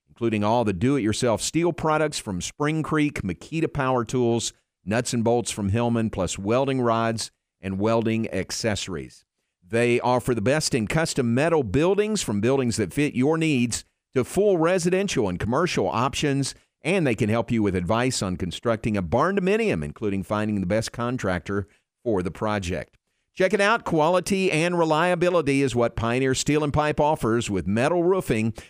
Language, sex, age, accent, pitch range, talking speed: English, male, 50-69, American, 105-150 Hz, 165 wpm